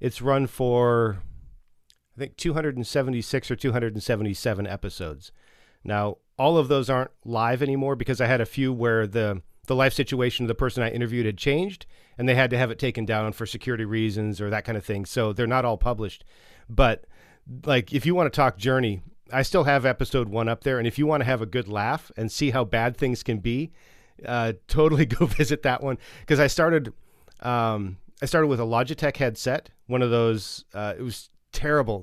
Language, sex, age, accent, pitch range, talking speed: English, male, 40-59, American, 110-135 Hz, 195 wpm